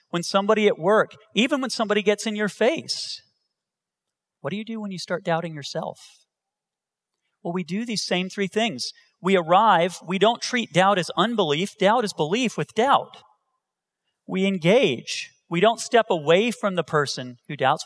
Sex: male